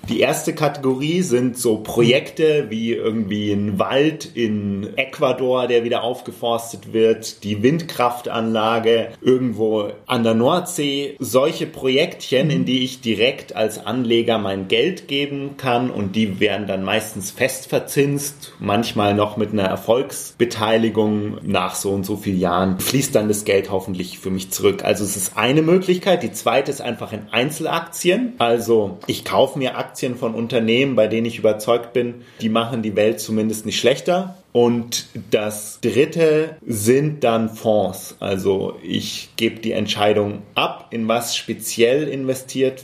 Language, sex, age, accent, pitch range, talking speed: German, male, 30-49, German, 105-130 Hz, 145 wpm